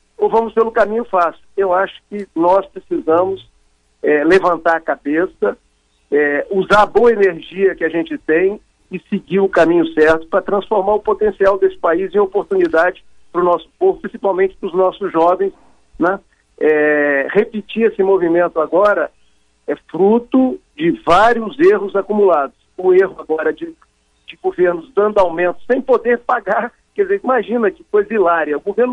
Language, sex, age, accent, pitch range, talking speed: Portuguese, male, 50-69, Brazilian, 175-240 Hz, 150 wpm